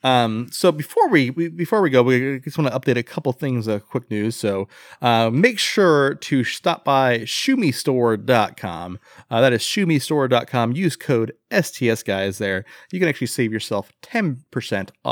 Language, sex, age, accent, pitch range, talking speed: English, male, 30-49, American, 115-145 Hz, 165 wpm